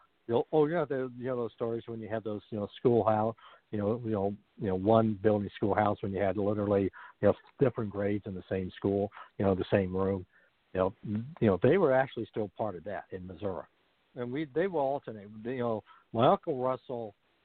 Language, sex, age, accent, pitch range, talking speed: English, male, 60-79, American, 100-120 Hz, 205 wpm